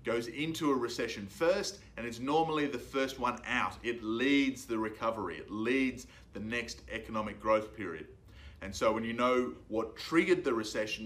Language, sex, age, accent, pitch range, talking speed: English, male, 30-49, Australian, 110-140 Hz, 175 wpm